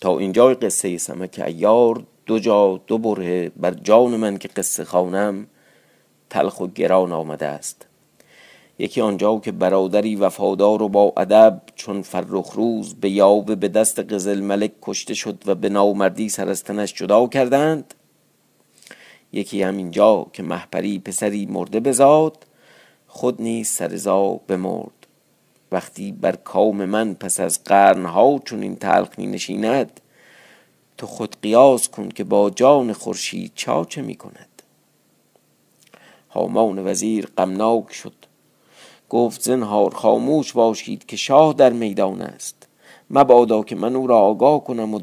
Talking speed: 135 wpm